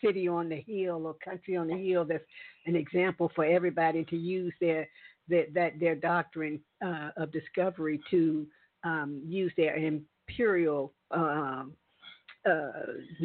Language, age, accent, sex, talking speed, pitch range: English, 50-69, American, female, 140 wpm, 160-215 Hz